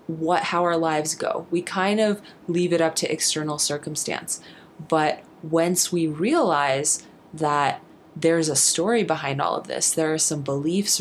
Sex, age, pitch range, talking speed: female, 20-39, 155-200 Hz, 165 wpm